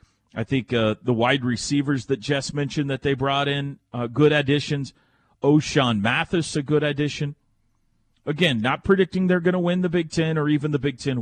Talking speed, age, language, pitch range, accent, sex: 195 wpm, 40-59, English, 110-165 Hz, American, male